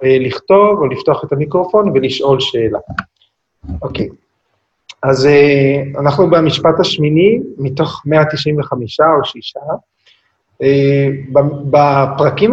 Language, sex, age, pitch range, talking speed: Hebrew, male, 30-49, 130-175 Hz, 95 wpm